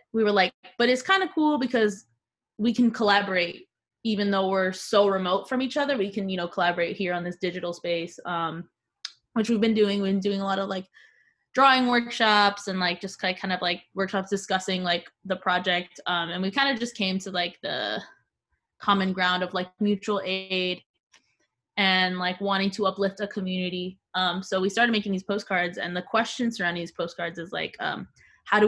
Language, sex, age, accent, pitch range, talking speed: English, female, 20-39, American, 180-210 Hz, 200 wpm